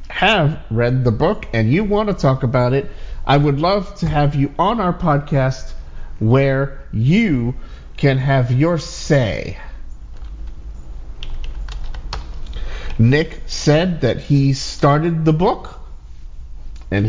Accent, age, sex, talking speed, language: American, 50-69, male, 120 wpm, English